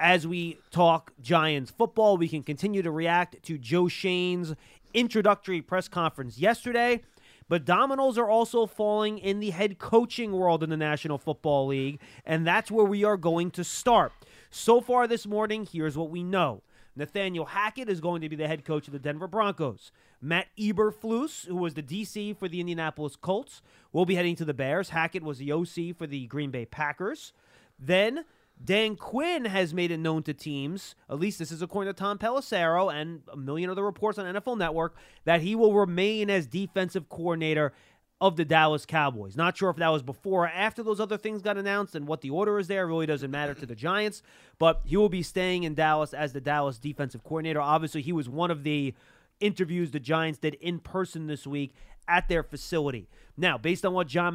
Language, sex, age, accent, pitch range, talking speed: English, male, 30-49, American, 155-200 Hz, 200 wpm